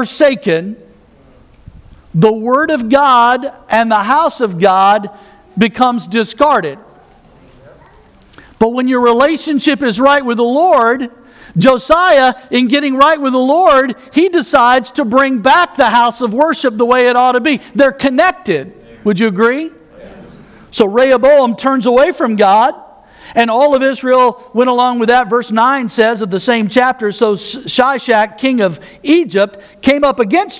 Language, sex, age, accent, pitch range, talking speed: English, male, 50-69, American, 225-275 Hz, 155 wpm